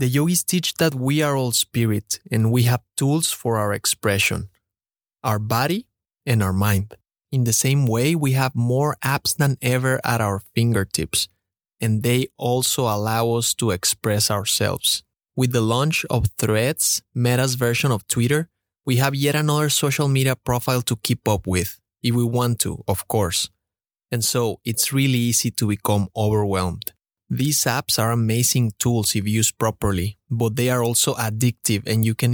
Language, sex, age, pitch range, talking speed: English, male, 20-39, 110-135 Hz, 170 wpm